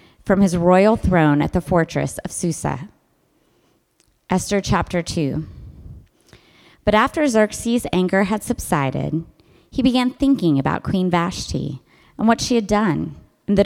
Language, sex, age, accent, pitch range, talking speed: English, female, 20-39, American, 155-210 Hz, 135 wpm